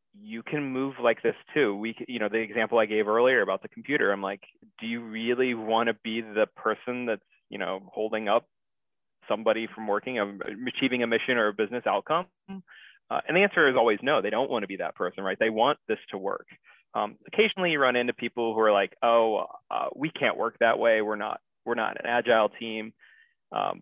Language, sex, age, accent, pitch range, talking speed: English, male, 20-39, American, 105-125 Hz, 220 wpm